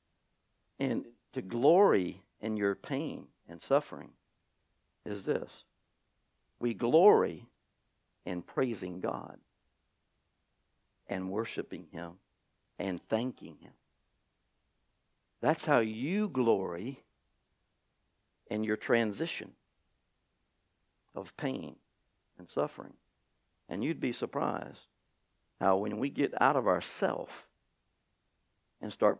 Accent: American